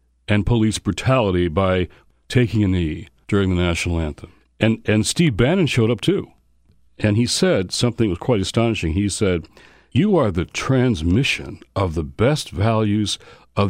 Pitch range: 85-115 Hz